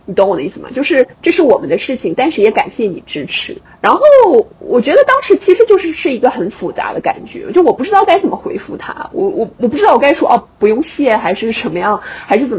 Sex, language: female, Chinese